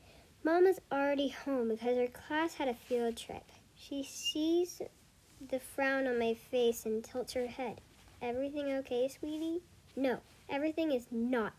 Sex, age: male, 40-59